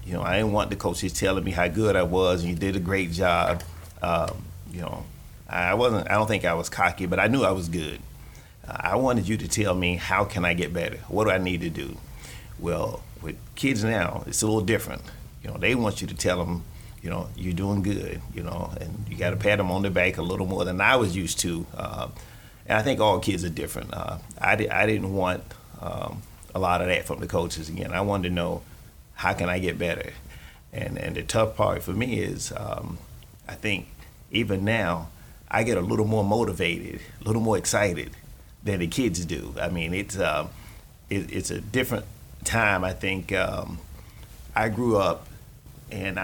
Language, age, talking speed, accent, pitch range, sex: English, 30-49, 220 wpm, American, 85-105 Hz, male